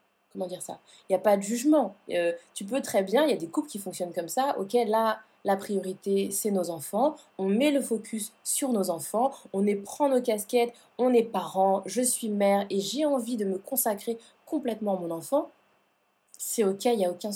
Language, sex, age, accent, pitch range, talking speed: French, female, 20-39, French, 205-290 Hz, 220 wpm